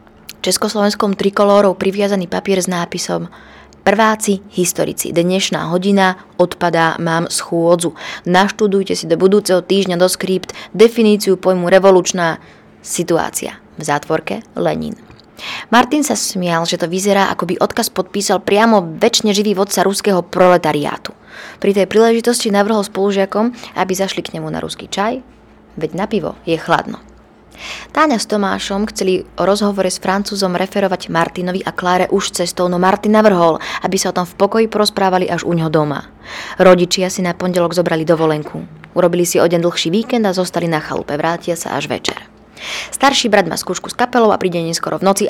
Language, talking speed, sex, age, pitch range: Slovak, 155 wpm, female, 20-39, 170-200 Hz